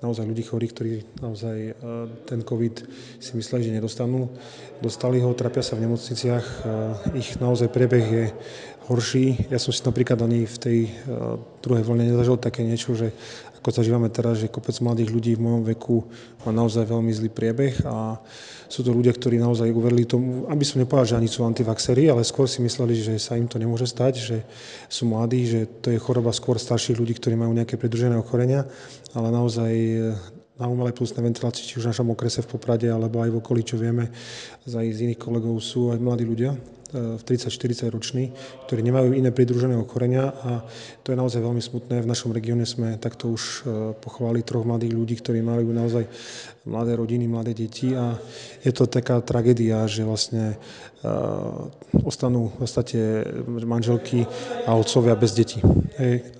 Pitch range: 115-125 Hz